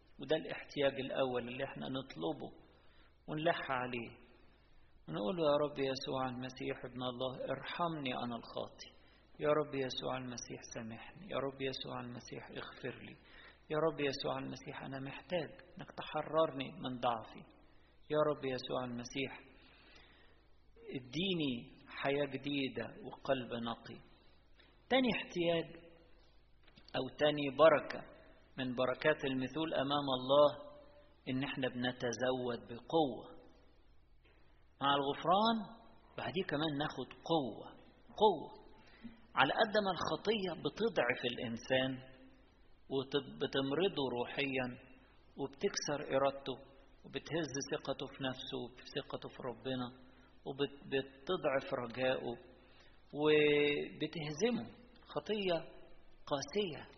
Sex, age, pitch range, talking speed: male, 50-69, 125-150 Hz, 95 wpm